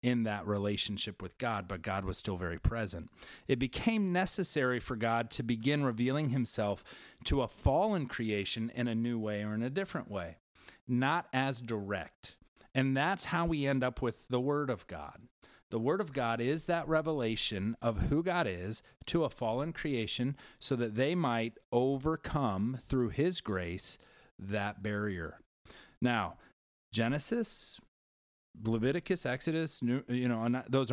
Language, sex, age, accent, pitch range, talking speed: English, male, 30-49, American, 110-140 Hz, 155 wpm